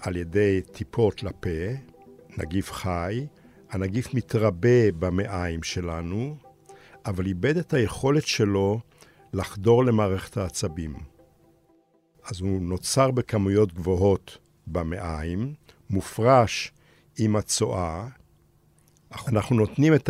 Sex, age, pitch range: male, 60-79, 90-120 Hz